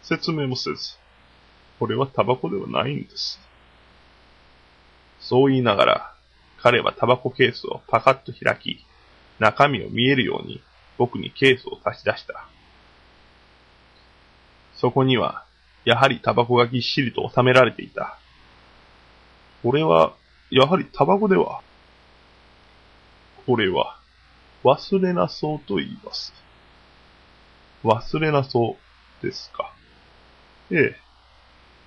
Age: 20-39